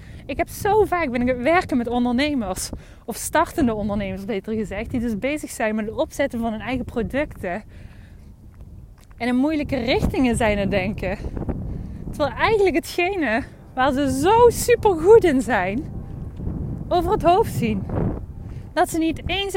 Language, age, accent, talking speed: Dutch, 20-39, Dutch, 155 wpm